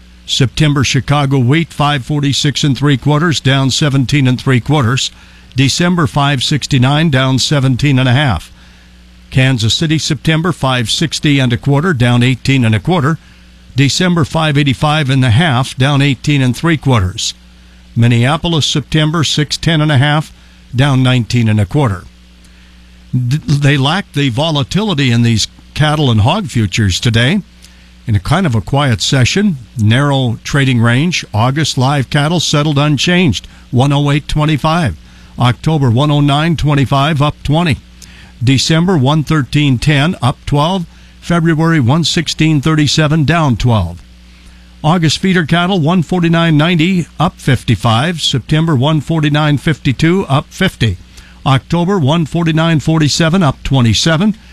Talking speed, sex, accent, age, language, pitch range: 115 wpm, male, American, 50-69, English, 120-155 Hz